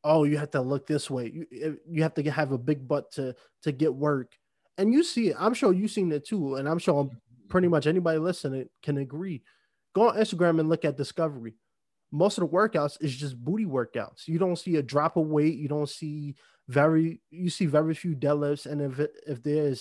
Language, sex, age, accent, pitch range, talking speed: English, male, 20-39, American, 145-170 Hz, 225 wpm